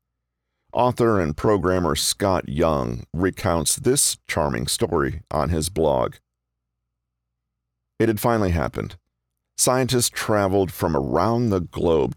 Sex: male